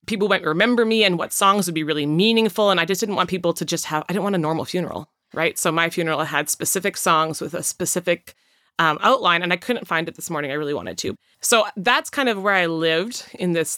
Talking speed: 255 wpm